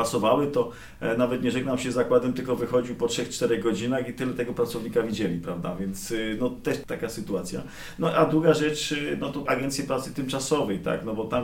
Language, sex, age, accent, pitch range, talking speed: Polish, male, 40-59, native, 115-150 Hz, 190 wpm